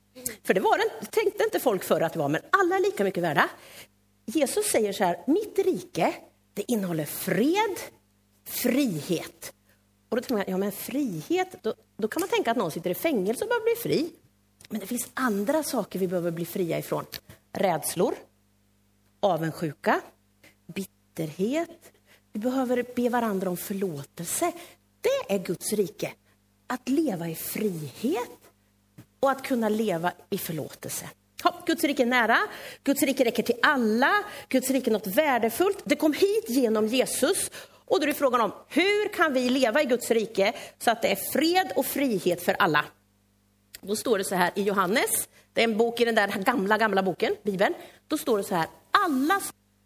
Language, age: Swedish, 40-59